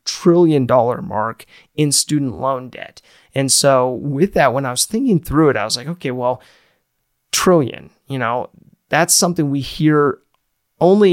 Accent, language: American, English